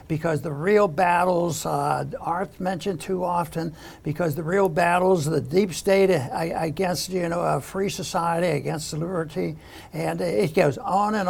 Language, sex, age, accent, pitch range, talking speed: English, male, 60-79, American, 170-215 Hz, 160 wpm